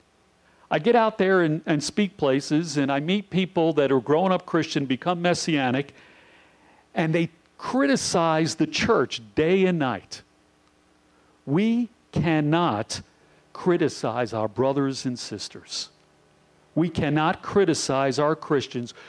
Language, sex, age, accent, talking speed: English, male, 50-69, American, 125 wpm